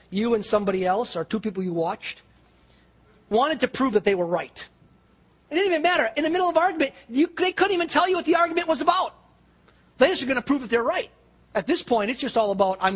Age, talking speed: 40-59, 245 wpm